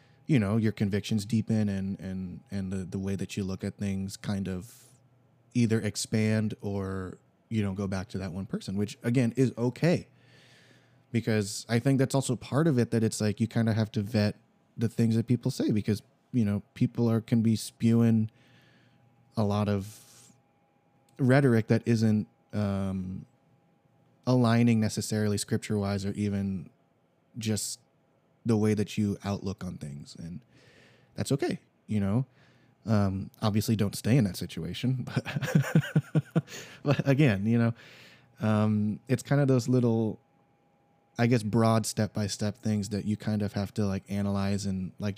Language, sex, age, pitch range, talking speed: English, male, 20-39, 105-135 Hz, 165 wpm